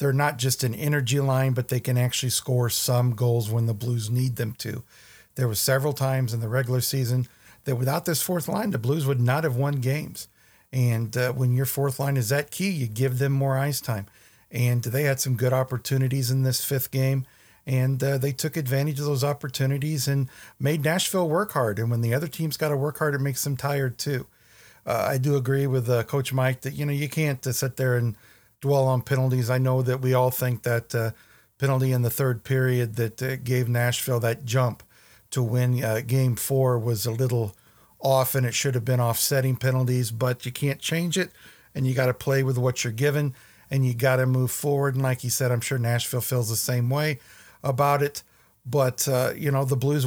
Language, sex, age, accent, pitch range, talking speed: English, male, 50-69, American, 125-140 Hz, 220 wpm